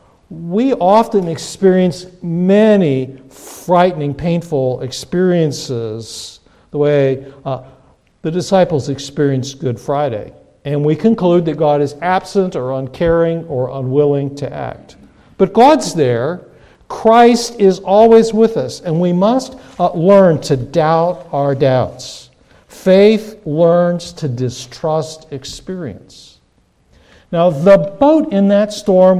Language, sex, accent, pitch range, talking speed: English, male, American, 140-195 Hz, 115 wpm